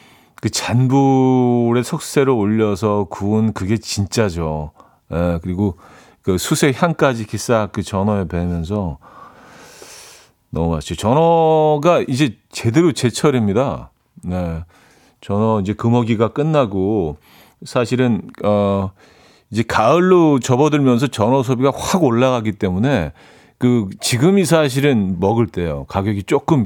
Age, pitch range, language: 40-59, 95-130 Hz, Korean